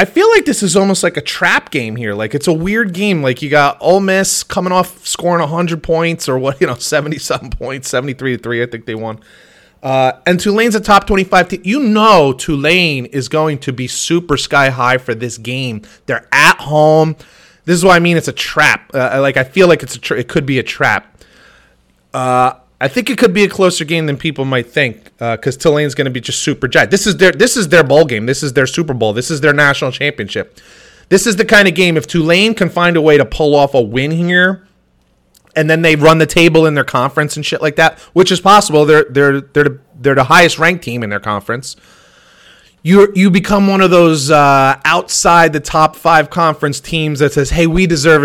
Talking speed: 235 wpm